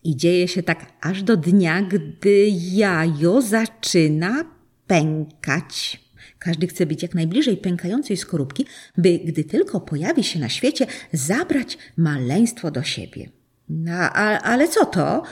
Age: 40-59